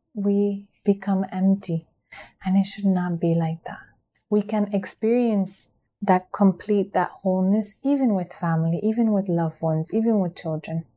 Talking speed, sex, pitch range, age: 150 wpm, female, 175-200 Hz, 20-39